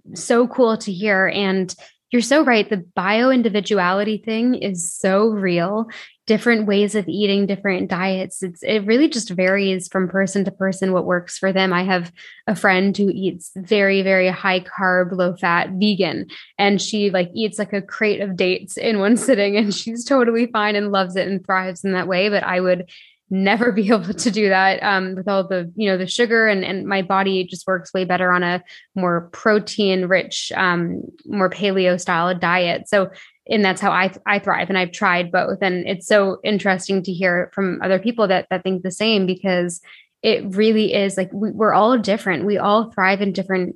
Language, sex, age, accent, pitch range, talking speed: English, female, 10-29, American, 185-210 Hz, 195 wpm